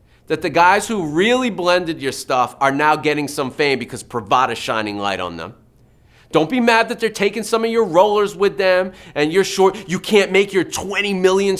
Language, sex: English, male